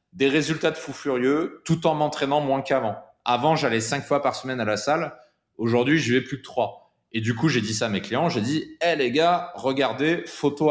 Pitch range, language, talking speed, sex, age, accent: 110-150 Hz, French, 230 wpm, male, 20-39, French